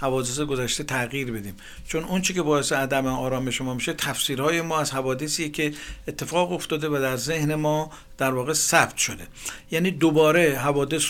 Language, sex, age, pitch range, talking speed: Persian, male, 60-79, 135-165 Hz, 160 wpm